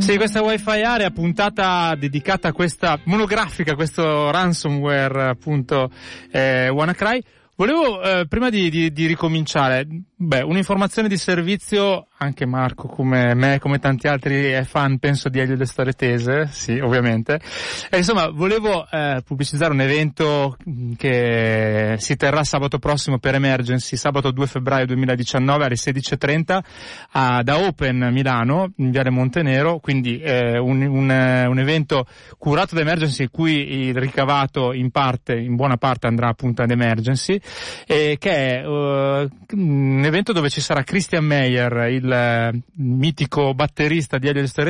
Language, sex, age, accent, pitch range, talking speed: Italian, male, 30-49, native, 130-165 Hz, 145 wpm